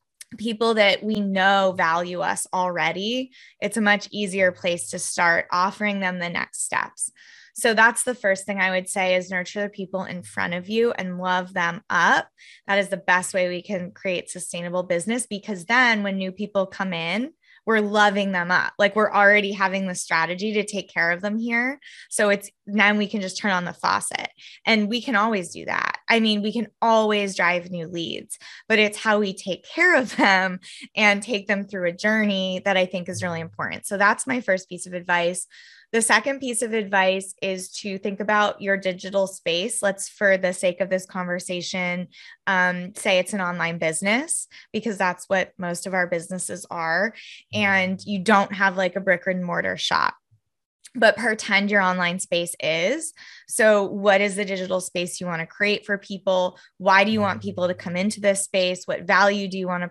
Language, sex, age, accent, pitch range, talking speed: English, female, 20-39, American, 180-210 Hz, 200 wpm